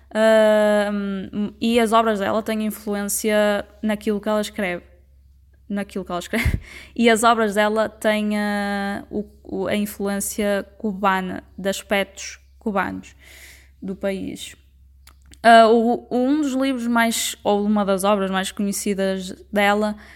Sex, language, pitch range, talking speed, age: female, Portuguese, 200-225 Hz, 125 wpm, 10-29